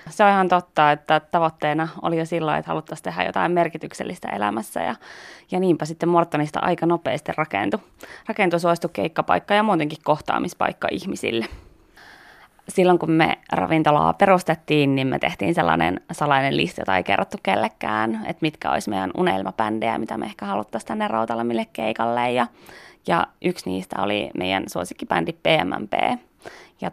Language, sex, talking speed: Finnish, female, 150 wpm